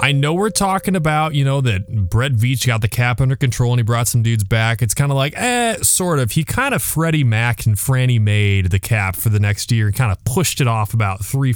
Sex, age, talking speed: male, 20-39, 260 wpm